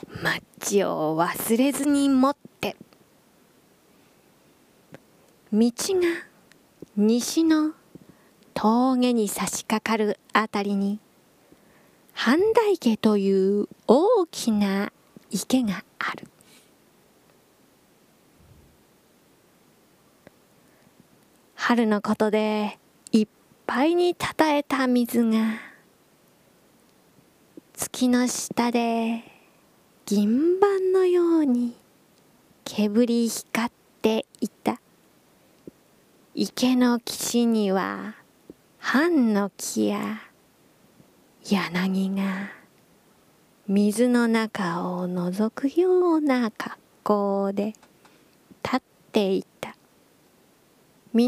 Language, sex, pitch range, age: Japanese, female, 210-275 Hz, 20-39